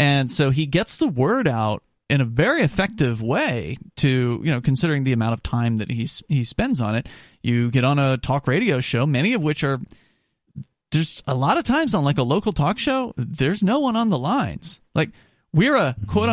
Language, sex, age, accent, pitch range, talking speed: English, male, 30-49, American, 125-190 Hz, 215 wpm